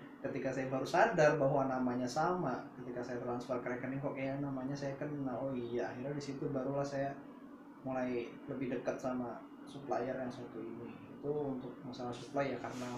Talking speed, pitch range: 170 wpm, 125-140 Hz